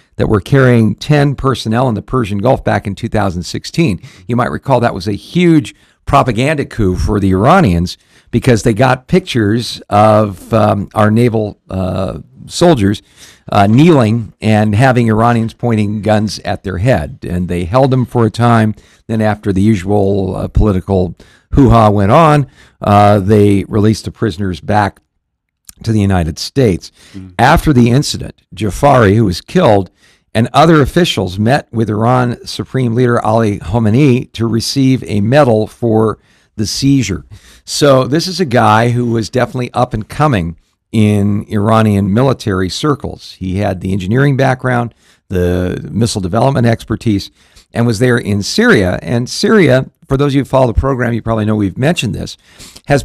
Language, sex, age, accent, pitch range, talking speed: English, male, 50-69, American, 100-125 Hz, 160 wpm